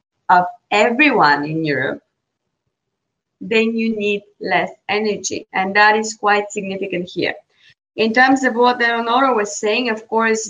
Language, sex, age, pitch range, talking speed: English, female, 20-39, 195-225 Hz, 135 wpm